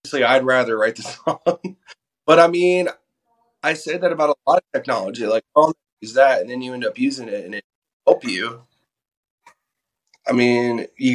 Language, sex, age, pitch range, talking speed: English, male, 20-39, 115-175 Hz, 185 wpm